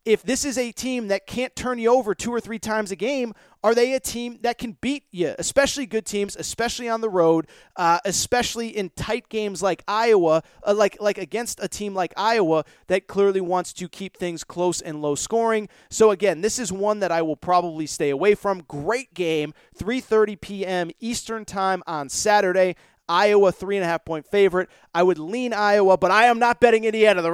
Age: 30-49